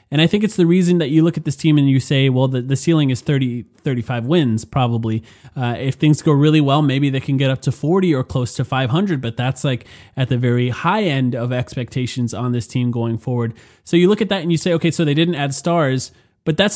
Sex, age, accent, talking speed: male, 20-39, American, 260 wpm